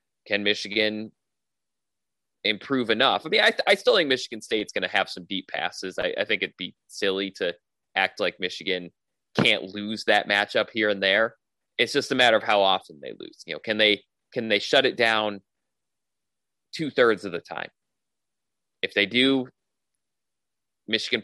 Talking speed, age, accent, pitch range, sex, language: 175 wpm, 20-39, American, 95-115 Hz, male, English